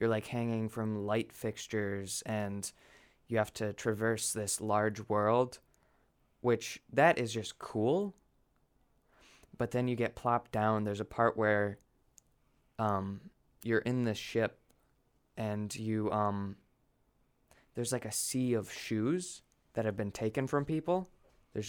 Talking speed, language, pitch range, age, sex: 140 wpm, English, 105-125 Hz, 20-39, male